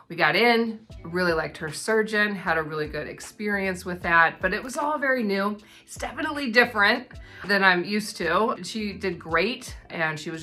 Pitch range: 165-210 Hz